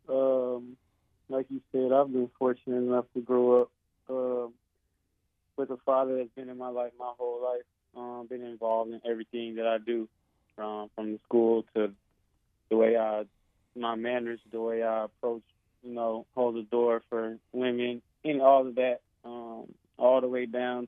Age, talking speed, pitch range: 20-39, 180 wpm, 105-120 Hz